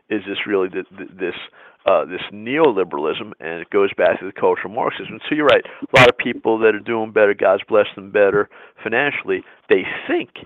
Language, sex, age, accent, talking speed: English, male, 50-69, American, 200 wpm